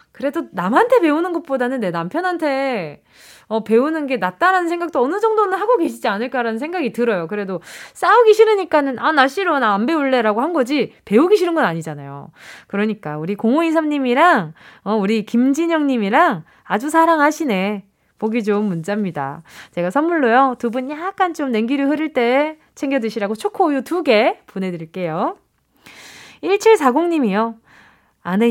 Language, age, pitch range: Korean, 20-39, 205-320 Hz